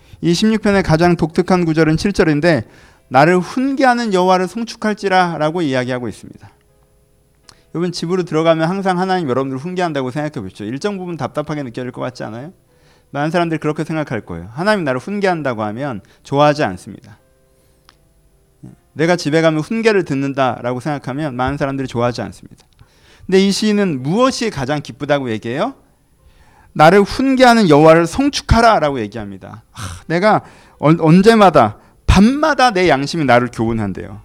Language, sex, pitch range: Korean, male, 125-195 Hz